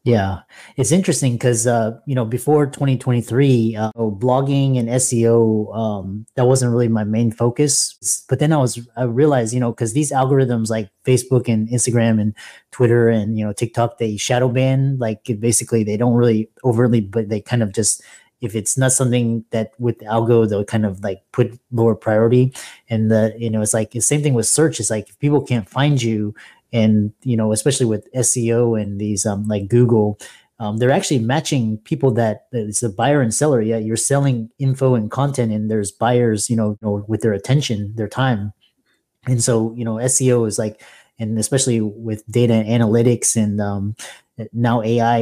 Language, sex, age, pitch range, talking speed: English, male, 30-49, 105-125 Hz, 190 wpm